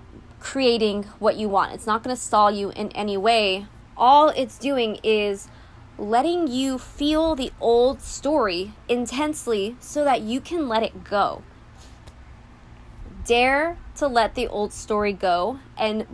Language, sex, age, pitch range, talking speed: English, female, 20-39, 200-260 Hz, 145 wpm